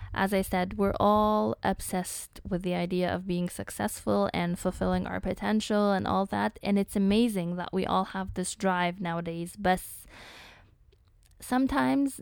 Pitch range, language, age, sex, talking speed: 175-205 Hz, English, 20-39, female, 150 wpm